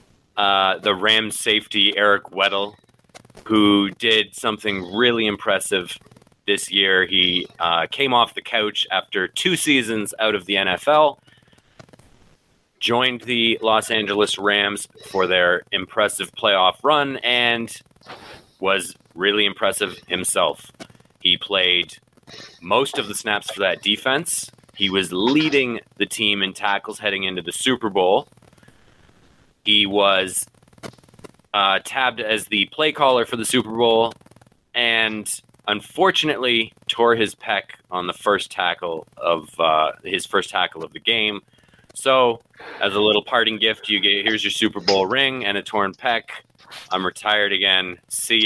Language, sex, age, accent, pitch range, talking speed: English, male, 30-49, American, 100-120 Hz, 140 wpm